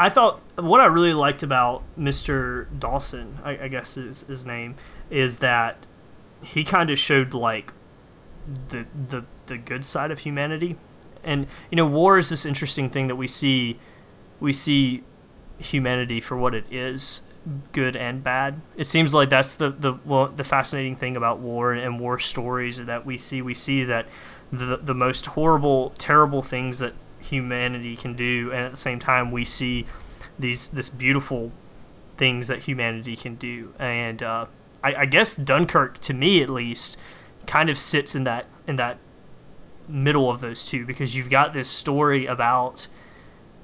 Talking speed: 170 wpm